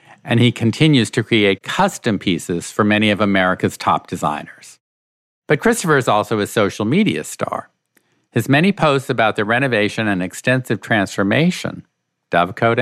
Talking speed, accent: 145 wpm, American